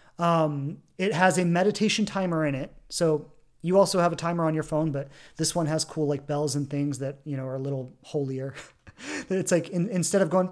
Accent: American